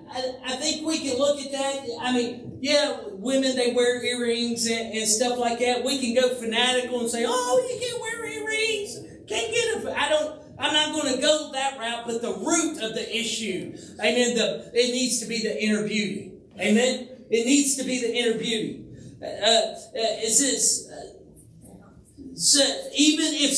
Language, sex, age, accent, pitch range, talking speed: English, male, 40-59, American, 230-285 Hz, 185 wpm